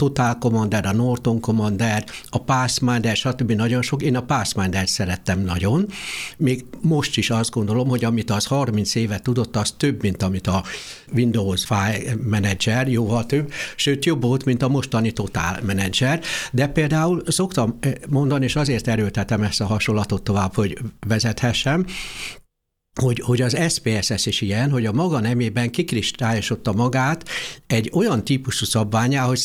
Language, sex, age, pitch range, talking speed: Hungarian, male, 60-79, 110-140 Hz, 150 wpm